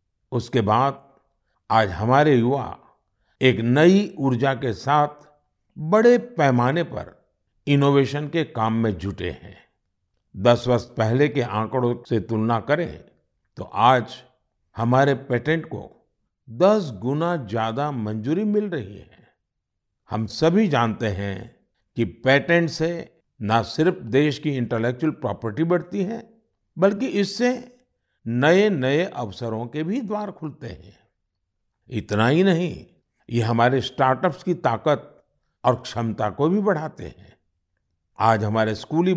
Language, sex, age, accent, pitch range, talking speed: Hindi, male, 60-79, native, 110-155 Hz, 125 wpm